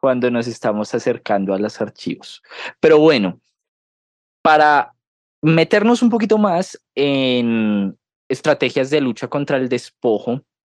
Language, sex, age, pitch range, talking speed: Spanish, male, 20-39, 110-155 Hz, 115 wpm